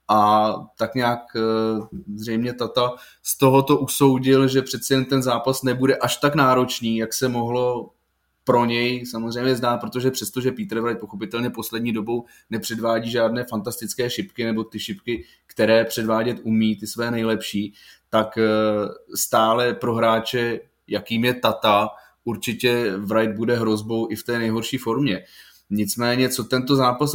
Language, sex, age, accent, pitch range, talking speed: Czech, male, 20-39, native, 115-130 Hz, 145 wpm